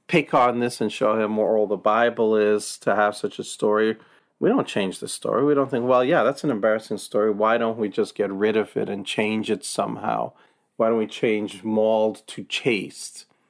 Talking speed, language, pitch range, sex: 220 wpm, English, 110-140 Hz, male